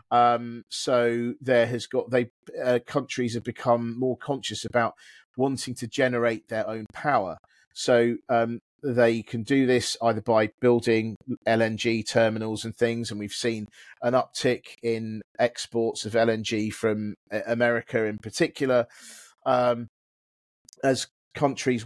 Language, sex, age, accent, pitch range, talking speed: English, male, 40-59, British, 110-125 Hz, 130 wpm